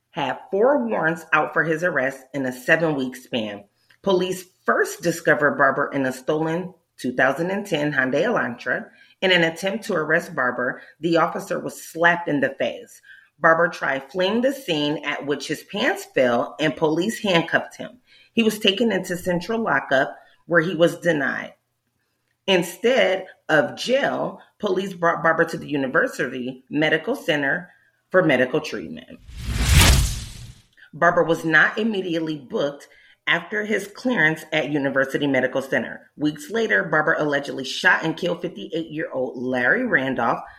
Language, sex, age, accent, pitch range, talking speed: English, female, 30-49, American, 140-185 Hz, 140 wpm